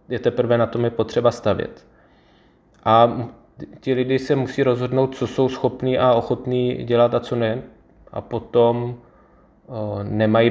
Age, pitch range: 20-39, 110-120 Hz